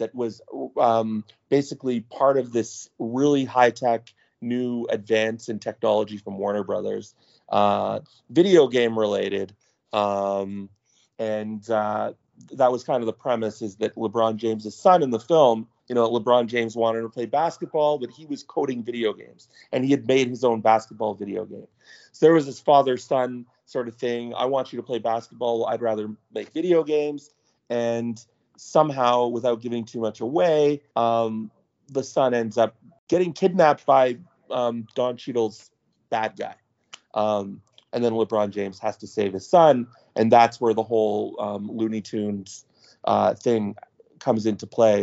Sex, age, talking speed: male, 30-49, 165 wpm